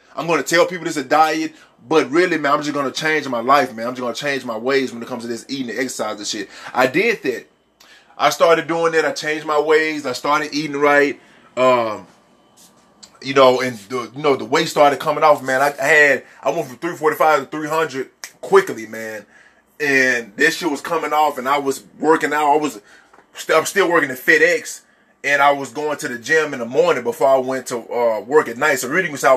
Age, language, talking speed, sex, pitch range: 20-39, English, 230 wpm, male, 135-165 Hz